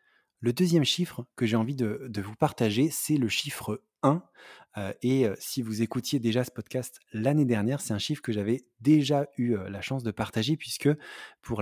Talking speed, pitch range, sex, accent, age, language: 185 wpm, 110-135 Hz, male, French, 20-39, English